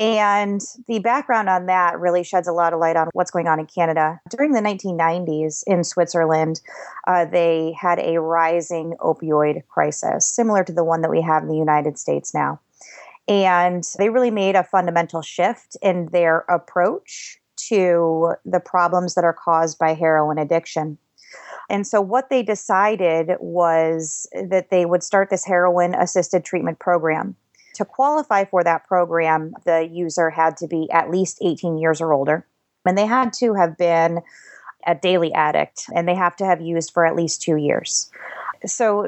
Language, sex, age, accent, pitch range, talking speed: English, female, 30-49, American, 165-190 Hz, 170 wpm